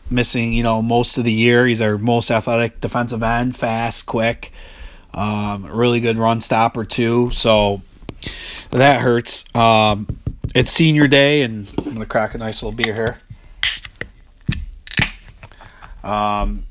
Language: English